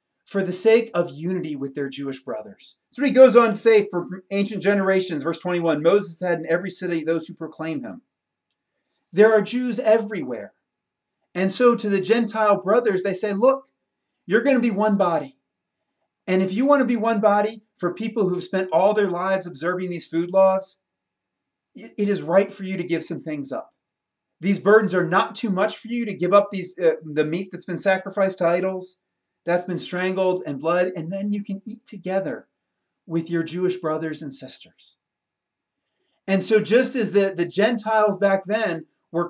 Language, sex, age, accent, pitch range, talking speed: English, male, 30-49, American, 180-225 Hz, 190 wpm